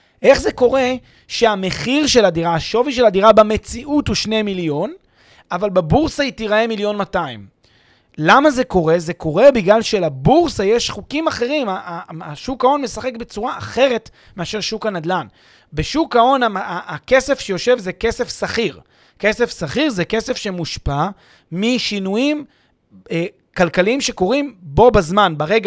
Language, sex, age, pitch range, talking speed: Hebrew, male, 30-49, 175-245 Hz, 130 wpm